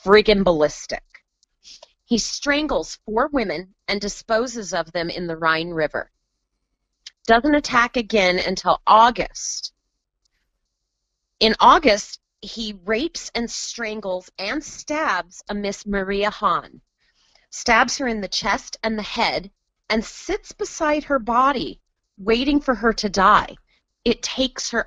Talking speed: 125 wpm